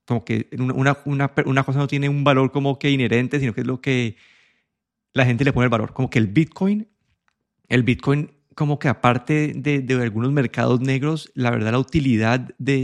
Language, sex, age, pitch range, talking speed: Spanish, male, 30-49, 125-150 Hz, 200 wpm